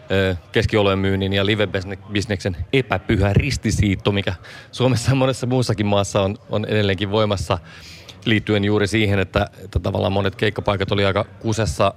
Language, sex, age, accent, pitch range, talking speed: Finnish, male, 30-49, native, 100-110 Hz, 130 wpm